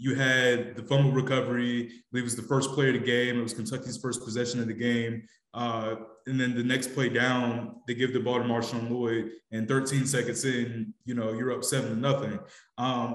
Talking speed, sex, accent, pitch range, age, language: 220 wpm, male, American, 115-125 Hz, 20-39, English